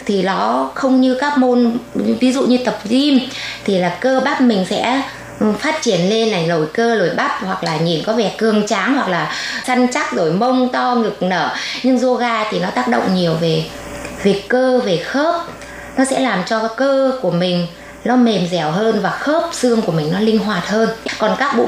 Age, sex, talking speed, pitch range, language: 20-39, female, 210 wpm, 185-245 Hz, Vietnamese